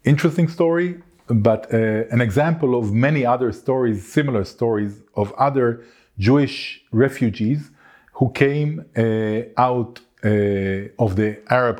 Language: Dutch